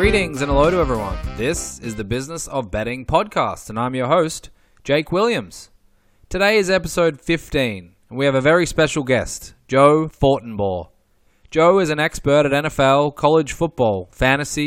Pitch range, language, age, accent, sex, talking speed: 125-160 Hz, English, 20-39, Australian, male, 165 wpm